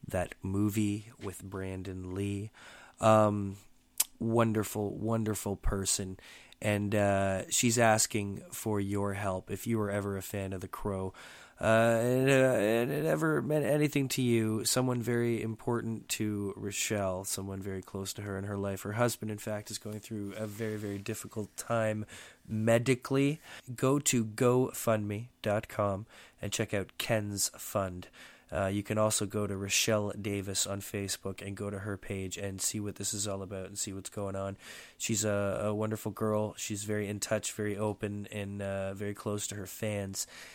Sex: male